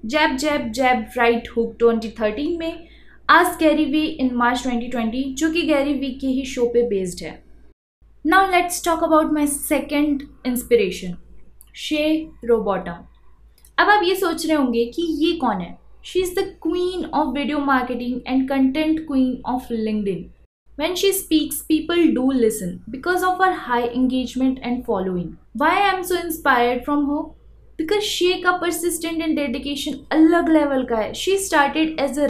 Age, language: 20-39, Hindi